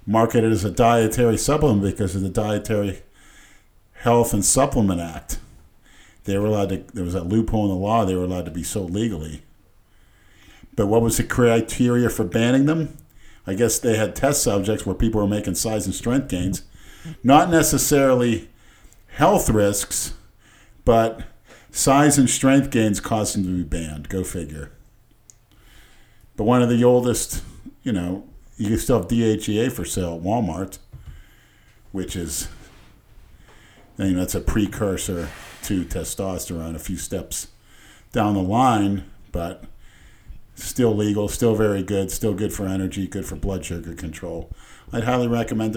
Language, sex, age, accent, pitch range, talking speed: English, male, 50-69, American, 90-115 Hz, 155 wpm